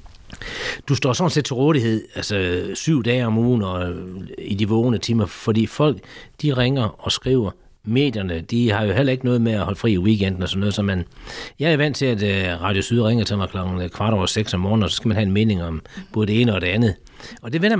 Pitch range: 100-135 Hz